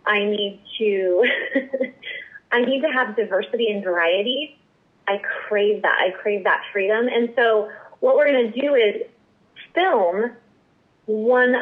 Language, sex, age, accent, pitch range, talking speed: English, female, 30-49, American, 205-250 Hz, 140 wpm